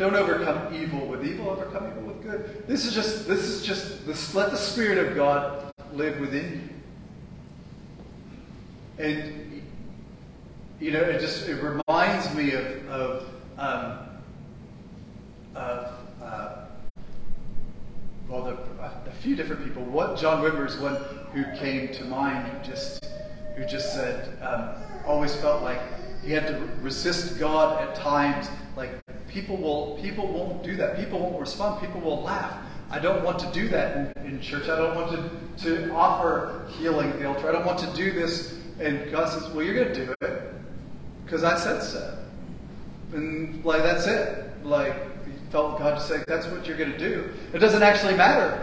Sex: male